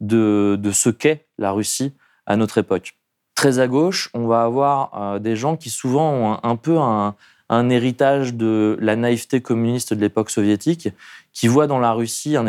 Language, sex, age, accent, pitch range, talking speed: French, male, 20-39, French, 105-135 Hz, 180 wpm